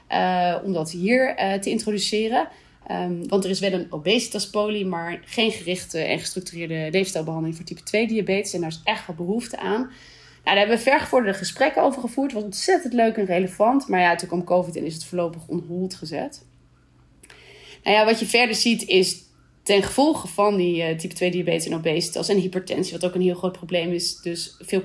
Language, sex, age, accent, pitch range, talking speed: Dutch, female, 20-39, Dutch, 180-220 Hz, 205 wpm